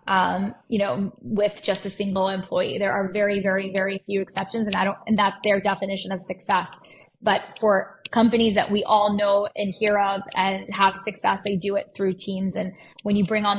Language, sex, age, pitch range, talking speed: English, female, 10-29, 195-210 Hz, 210 wpm